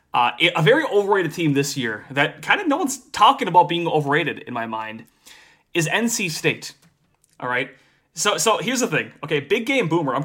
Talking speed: 200 wpm